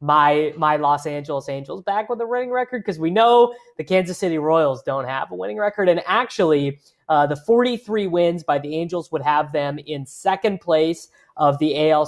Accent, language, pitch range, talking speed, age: American, English, 145-205 Hz, 200 wpm, 20-39